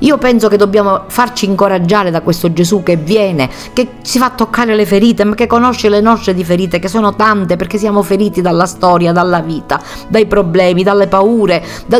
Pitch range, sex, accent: 185-230 Hz, female, native